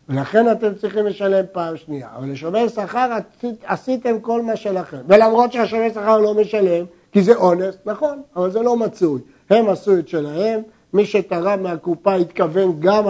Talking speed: 165 wpm